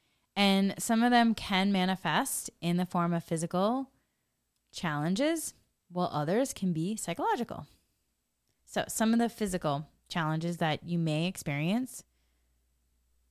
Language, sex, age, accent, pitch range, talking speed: English, female, 20-39, American, 155-195 Hz, 120 wpm